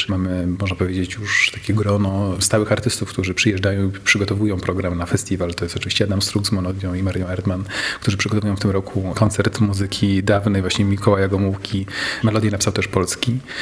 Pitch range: 95-110 Hz